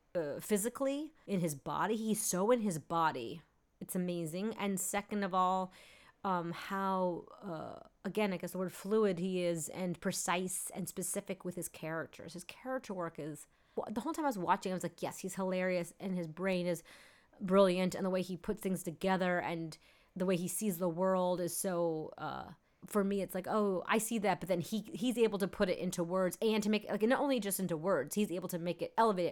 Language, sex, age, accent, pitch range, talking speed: English, female, 30-49, American, 175-210 Hz, 215 wpm